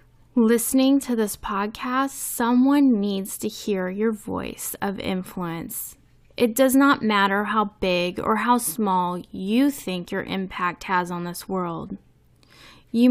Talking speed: 135 wpm